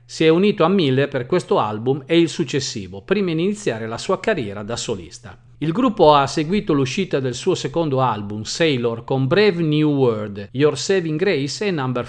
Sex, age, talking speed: male, 50-69, 190 wpm